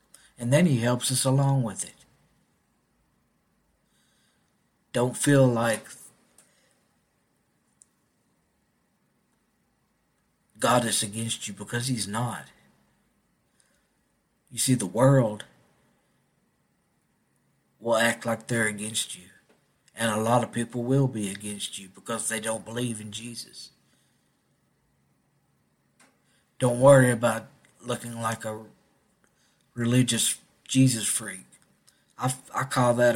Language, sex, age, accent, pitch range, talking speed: English, male, 60-79, American, 110-125 Hz, 100 wpm